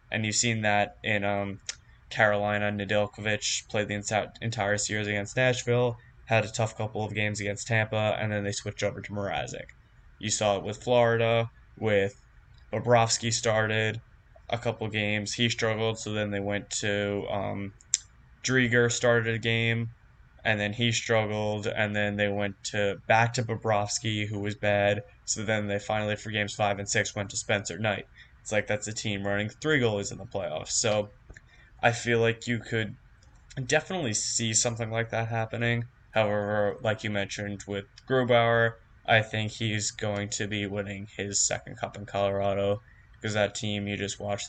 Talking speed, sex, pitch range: 170 wpm, male, 105-115 Hz